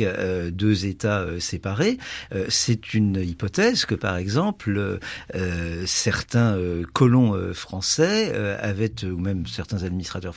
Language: French